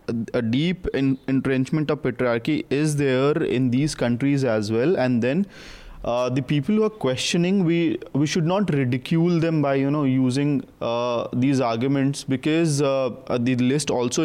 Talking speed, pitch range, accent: 160 wpm, 125-150 Hz, Indian